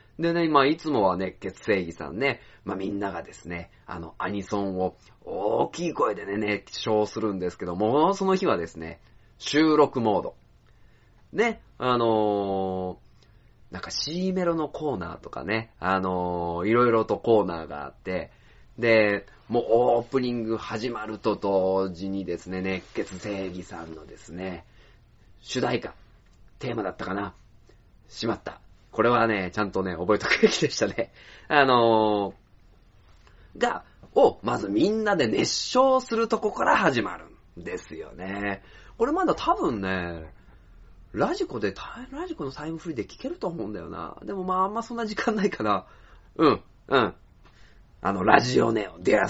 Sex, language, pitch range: male, Japanese, 95-120 Hz